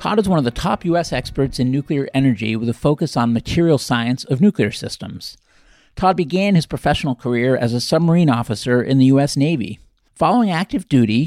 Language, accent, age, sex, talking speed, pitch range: English, American, 50-69, male, 190 wpm, 120-155 Hz